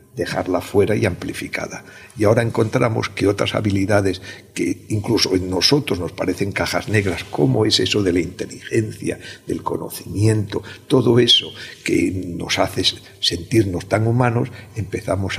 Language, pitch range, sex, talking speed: Spanish, 95-115 Hz, male, 135 wpm